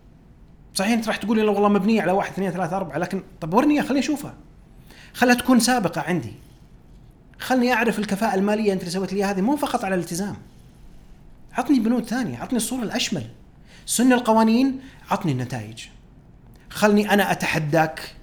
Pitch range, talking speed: 130-210 Hz, 150 wpm